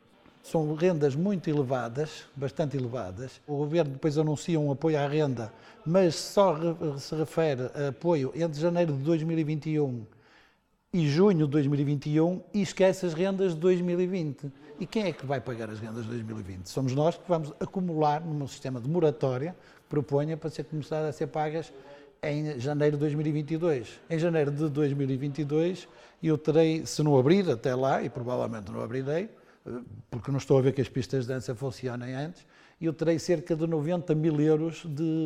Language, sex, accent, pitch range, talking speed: Portuguese, male, Portuguese, 140-180 Hz, 170 wpm